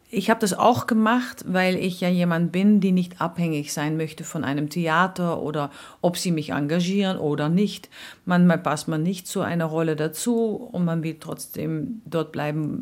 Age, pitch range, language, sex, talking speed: 50-69, 150-195 Hz, German, female, 185 wpm